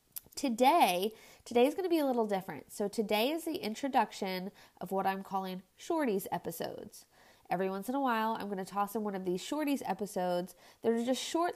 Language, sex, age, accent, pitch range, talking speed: English, female, 20-39, American, 195-260 Hz, 195 wpm